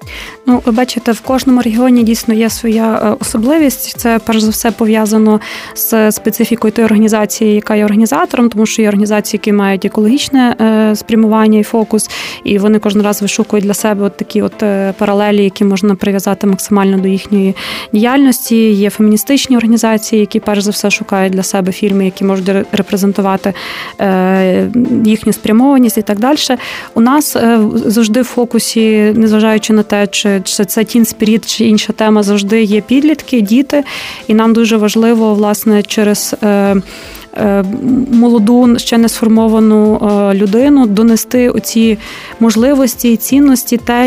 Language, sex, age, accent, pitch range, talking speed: Ukrainian, female, 20-39, native, 210-230 Hz, 145 wpm